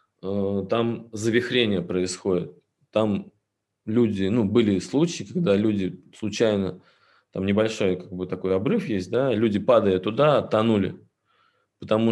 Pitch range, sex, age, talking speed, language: 100-120 Hz, male, 20-39, 120 wpm, Russian